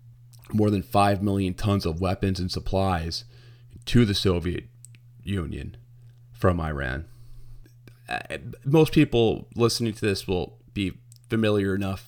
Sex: male